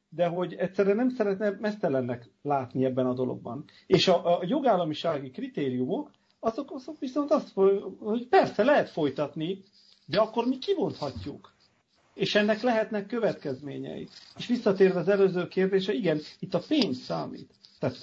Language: Hungarian